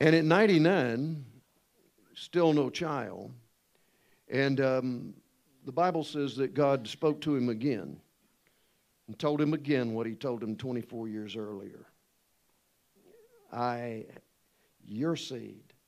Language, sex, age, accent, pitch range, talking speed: English, male, 50-69, American, 115-160 Hz, 115 wpm